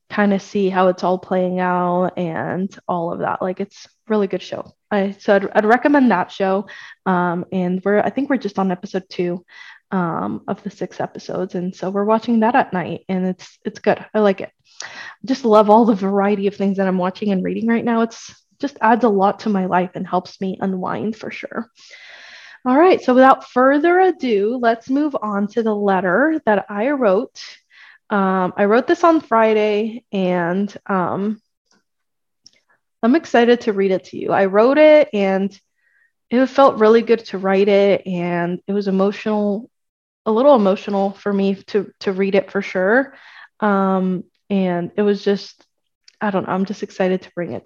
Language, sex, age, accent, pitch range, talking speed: English, female, 20-39, American, 190-230 Hz, 190 wpm